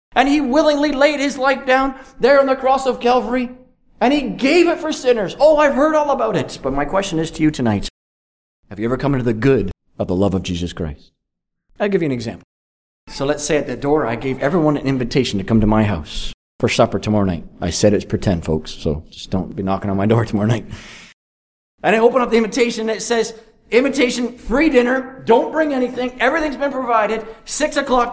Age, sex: 40-59, male